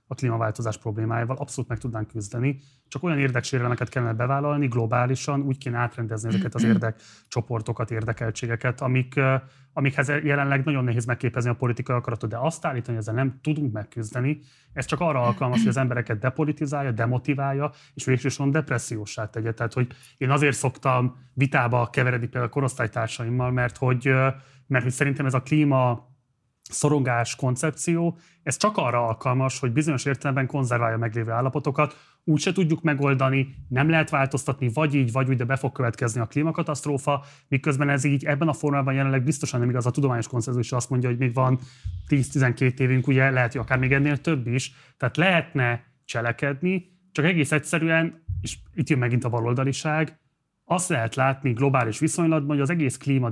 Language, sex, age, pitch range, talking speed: Hungarian, male, 30-49, 120-145 Hz, 165 wpm